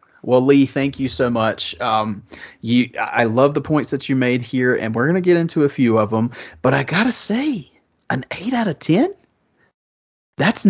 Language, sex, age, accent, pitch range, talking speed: English, male, 30-49, American, 115-165 Hz, 210 wpm